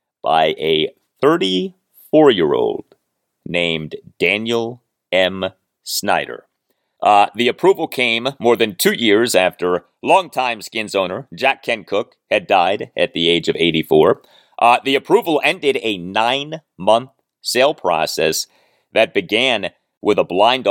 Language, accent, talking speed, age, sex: English, American, 120 wpm, 40-59, male